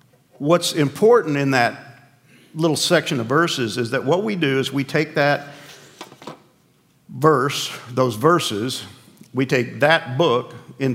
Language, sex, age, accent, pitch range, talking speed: English, male, 50-69, American, 125-160 Hz, 135 wpm